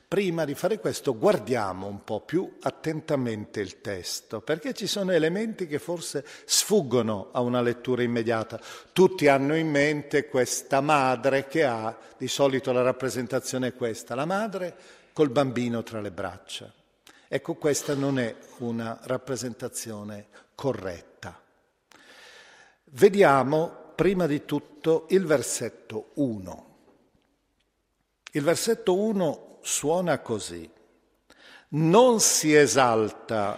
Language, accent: Italian, native